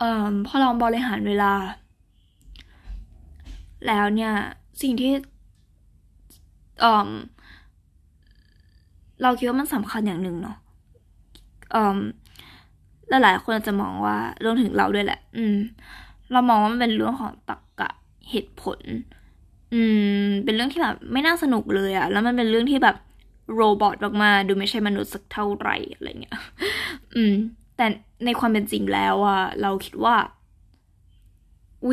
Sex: female